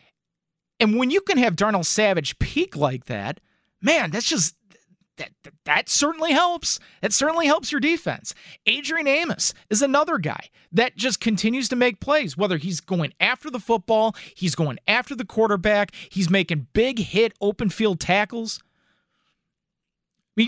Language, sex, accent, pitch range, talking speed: English, male, American, 165-230 Hz, 160 wpm